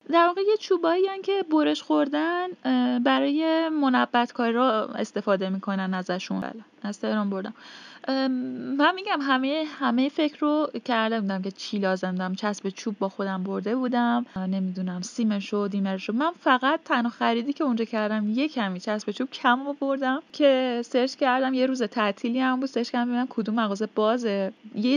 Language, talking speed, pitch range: English, 165 wpm, 215-275 Hz